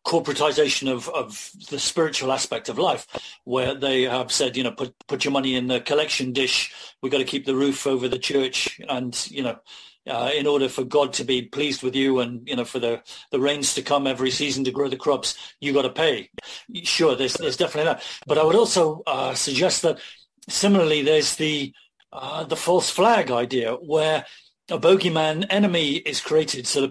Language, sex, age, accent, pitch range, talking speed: English, male, 40-59, British, 130-155 Hz, 205 wpm